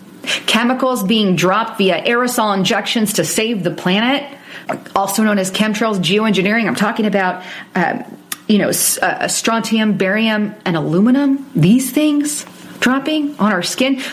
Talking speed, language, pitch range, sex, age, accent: 130 wpm, English, 195-255 Hz, female, 30-49, American